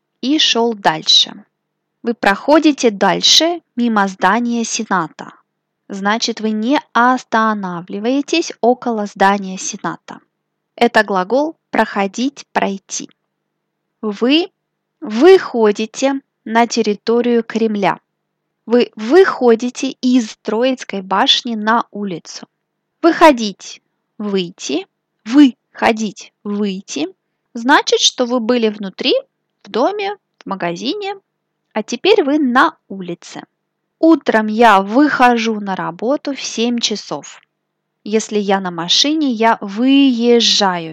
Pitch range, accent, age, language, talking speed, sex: 205-260 Hz, native, 20-39, Russian, 90 wpm, female